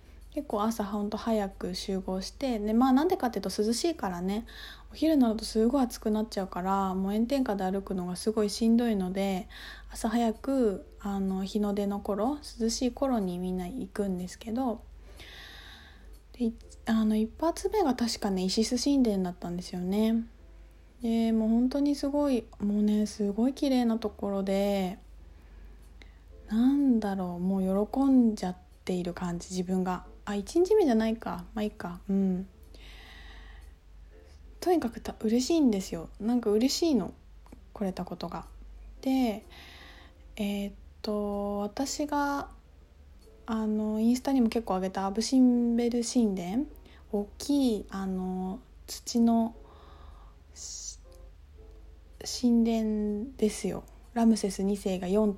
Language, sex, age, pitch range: Japanese, female, 20-39, 180-235 Hz